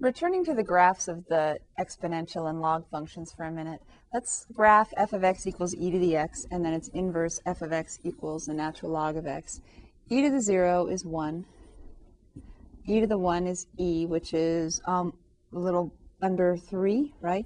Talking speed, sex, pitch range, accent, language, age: 195 wpm, female, 160-200 Hz, American, English, 30-49